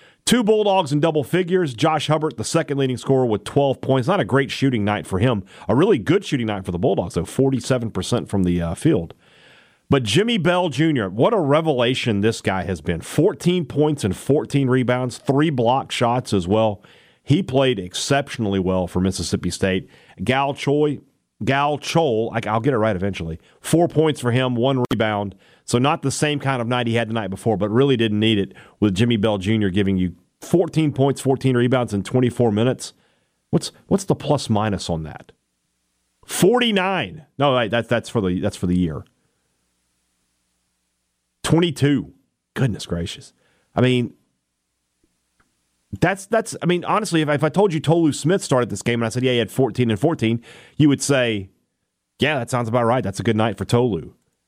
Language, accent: English, American